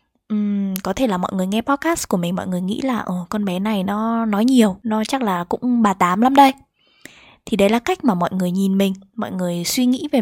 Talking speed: 255 wpm